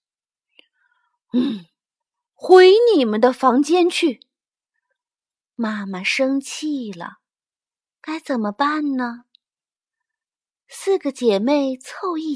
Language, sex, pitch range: Chinese, female, 235-355 Hz